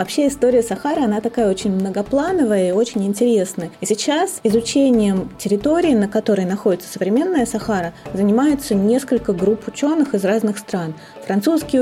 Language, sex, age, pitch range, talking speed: Russian, female, 30-49, 205-250 Hz, 135 wpm